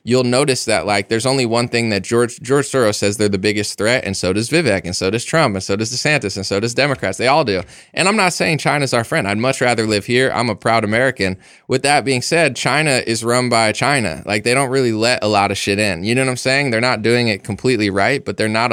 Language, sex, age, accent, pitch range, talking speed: English, male, 20-39, American, 110-135 Hz, 270 wpm